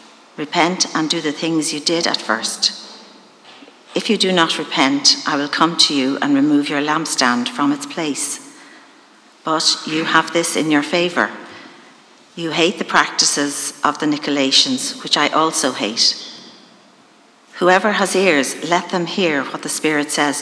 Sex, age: female, 50-69